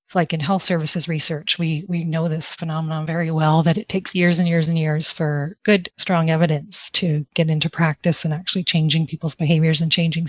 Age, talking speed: 30-49, 205 wpm